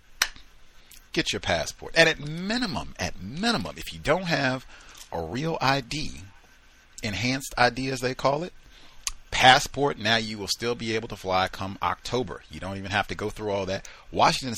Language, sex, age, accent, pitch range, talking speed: English, male, 40-59, American, 85-120 Hz, 175 wpm